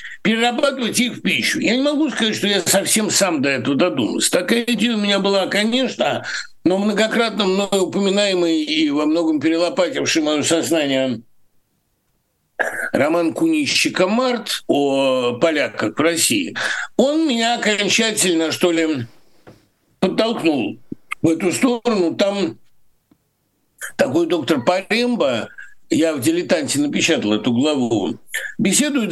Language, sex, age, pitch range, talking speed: Russian, male, 60-79, 165-255 Hz, 115 wpm